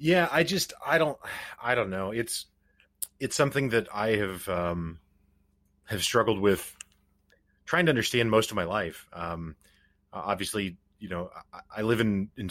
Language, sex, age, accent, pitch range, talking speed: English, male, 30-49, American, 90-120 Hz, 165 wpm